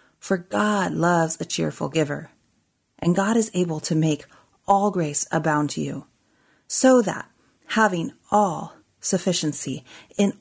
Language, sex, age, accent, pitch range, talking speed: English, female, 30-49, American, 150-205 Hz, 135 wpm